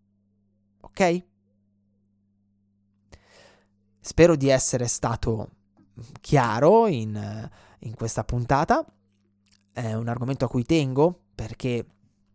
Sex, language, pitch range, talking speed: male, Italian, 105-155 Hz, 85 wpm